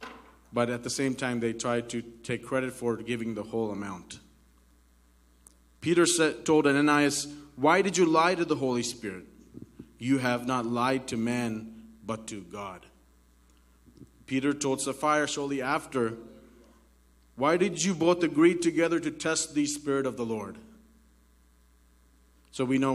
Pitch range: 115-145 Hz